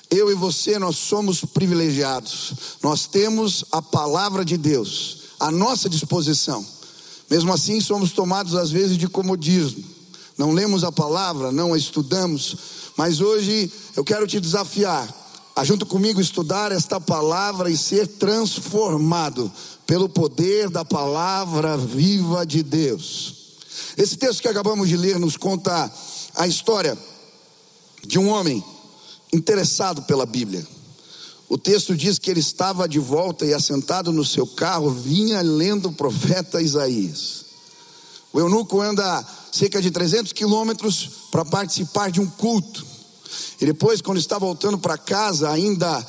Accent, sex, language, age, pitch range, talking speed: Brazilian, male, Portuguese, 40-59, 160-200 Hz, 140 wpm